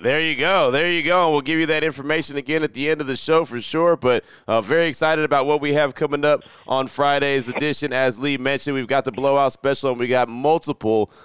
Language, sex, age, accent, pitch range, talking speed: English, male, 30-49, American, 125-155 Hz, 240 wpm